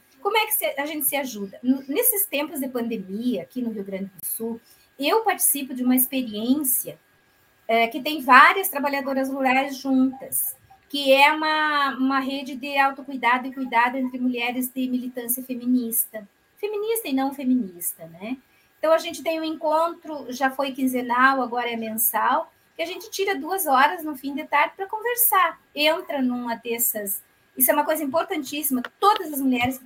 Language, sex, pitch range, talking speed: Portuguese, female, 235-295 Hz, 170 wpm